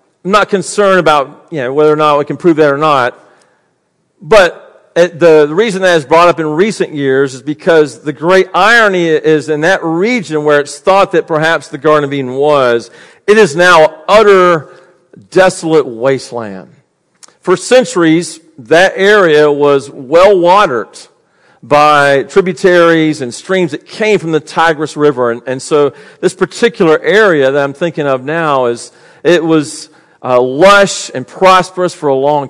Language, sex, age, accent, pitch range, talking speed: English, male, 50-69, American, 150-180 Hz, 165 wpm